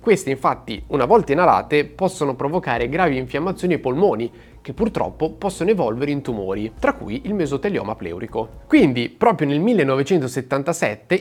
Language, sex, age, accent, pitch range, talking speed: Italian, male, 30-49, native, 125-165 Hz, 140 wpm